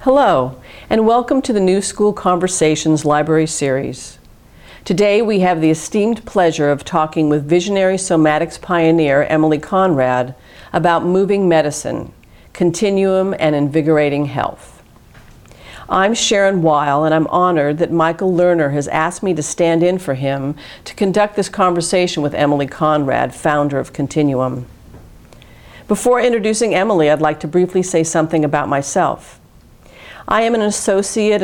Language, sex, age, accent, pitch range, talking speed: English, female, 50-69, American, 145-185 Hz, 140 wpm